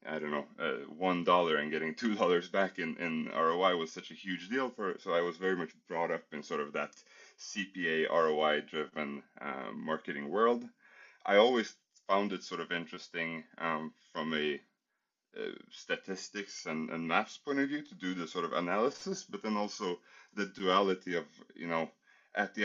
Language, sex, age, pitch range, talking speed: English, male, 30-49, 80-105 Hz, 180 wpm